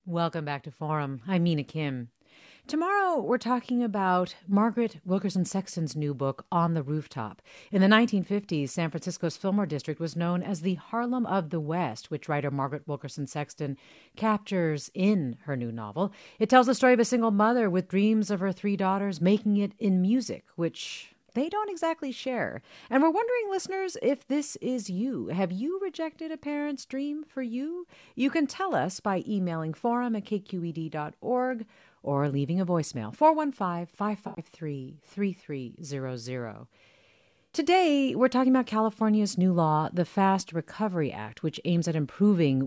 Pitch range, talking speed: 160-240 Hz, 160 wpm